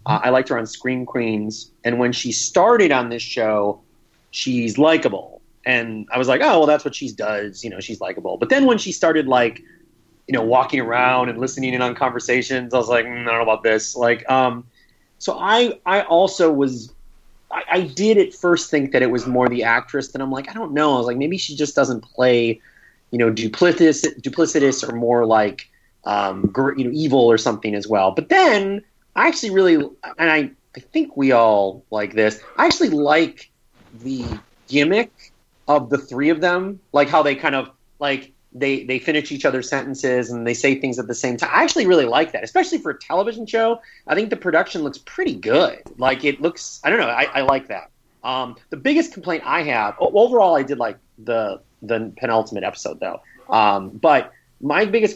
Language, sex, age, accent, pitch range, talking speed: English, male, 30-49, American, 120-165 Hz, 210 wpm